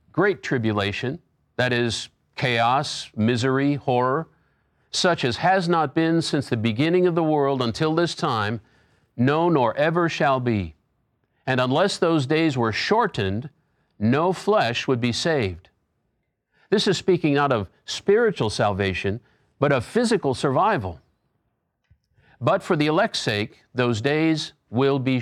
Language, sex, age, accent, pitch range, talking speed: English, male, 50-69, American, 110-155 Hz, 135 wpm